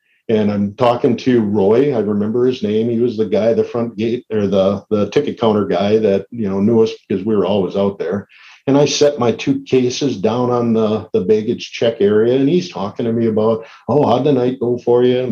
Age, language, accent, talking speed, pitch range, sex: 50-69, English, American, 235 wpm, 115-145 Hz, male